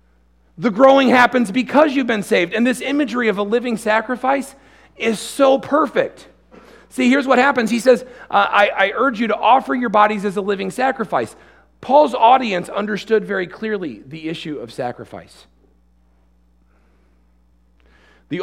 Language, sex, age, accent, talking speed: English, male, 40-59, American, 145 wpm